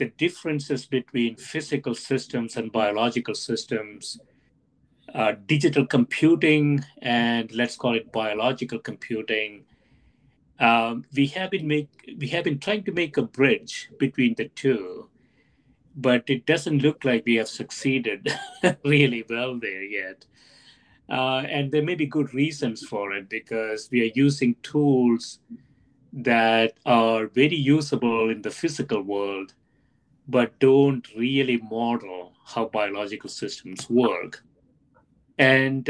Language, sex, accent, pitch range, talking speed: English, male, Indian, 115-145 Hz, 120 wpm